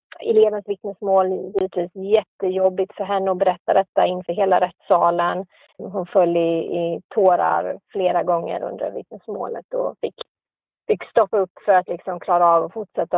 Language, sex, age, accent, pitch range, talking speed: Swedish, female, 30-49, native, 185-210 Hz, 150 wpm